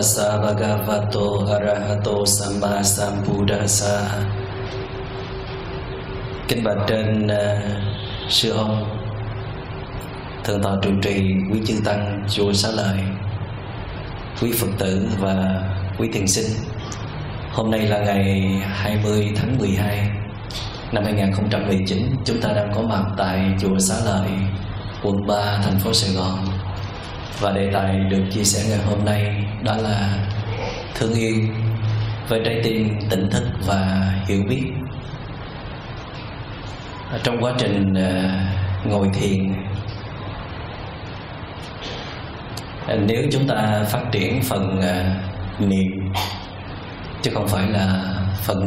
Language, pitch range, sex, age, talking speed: Vietnamese, 95-110 Hz, male, 20-39, 105 wpm